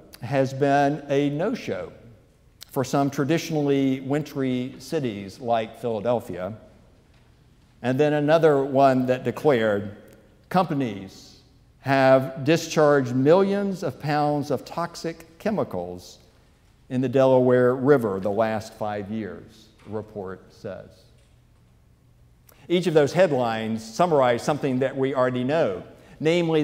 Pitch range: 120-150 Hz